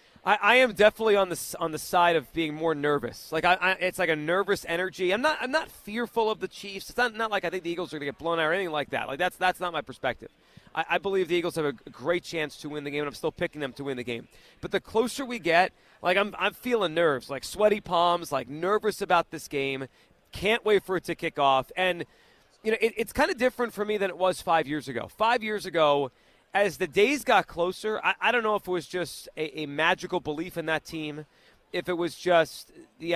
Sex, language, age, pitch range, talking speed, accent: male, English, 30-49, 150-195 Hz, 260 wpm, American